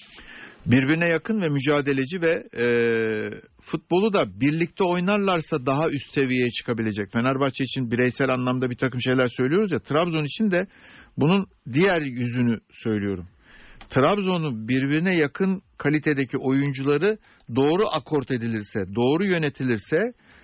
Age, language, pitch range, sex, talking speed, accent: 60-79, Turkish, 130-180 Hz, male, 115 wpm, native